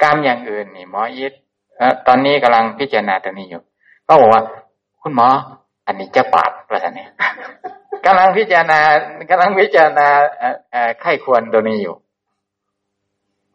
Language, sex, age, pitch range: Thai, male, 60-79, 135-190 Hz